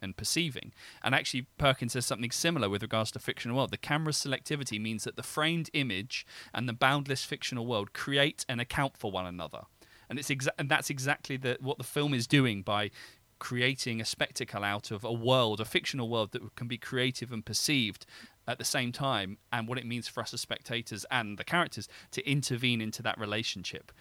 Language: English